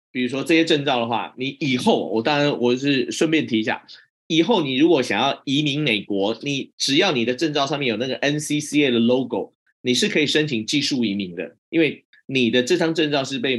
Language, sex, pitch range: Chinese, male, 115-160 Hz